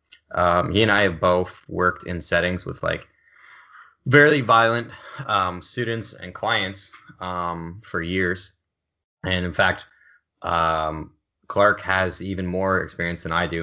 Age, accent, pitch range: 10-29, American, 85-100 Hz